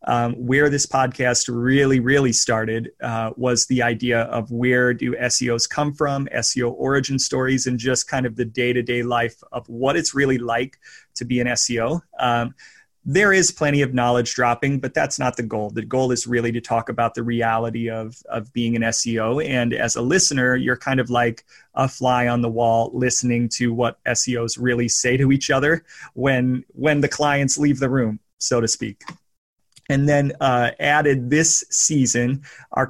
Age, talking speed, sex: 30-49, 185 wpm, male